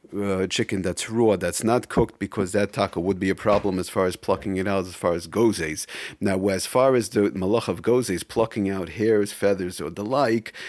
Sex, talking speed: male, 220 wpm